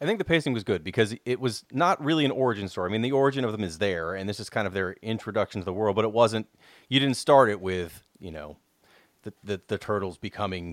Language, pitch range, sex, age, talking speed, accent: English, 95-125 Hz, male, 30-49, 255 wpm, American